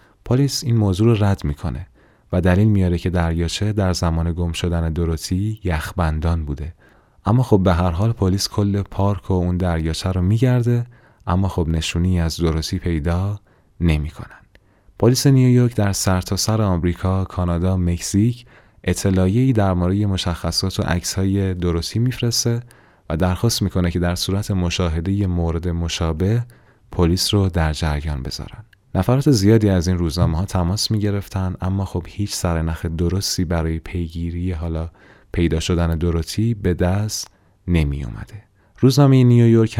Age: 30-49